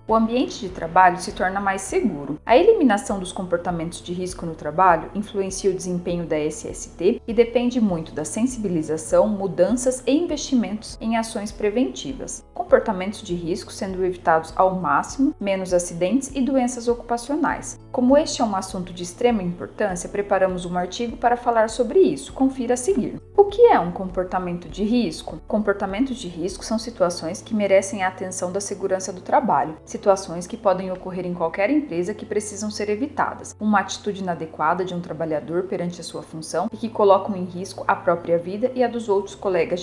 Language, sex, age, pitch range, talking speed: Portuguese, female, 40-59, 180-230 Hz, 175 wpm